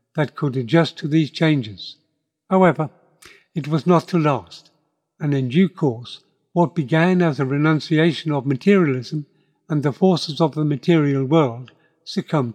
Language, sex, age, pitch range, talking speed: English, male, 60-79, 140-170 Hz, 150 wpm